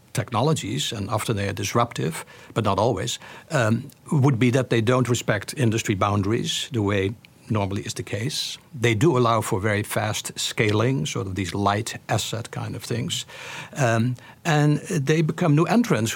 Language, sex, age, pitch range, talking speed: English, male, 60-79, 115-140 Hz, 165 wpm